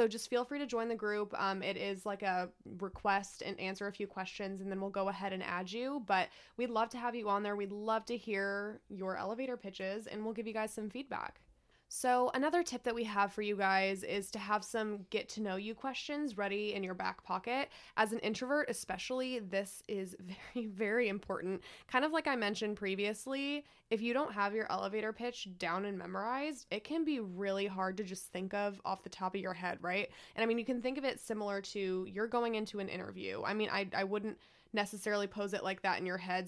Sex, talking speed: female, 230 wpm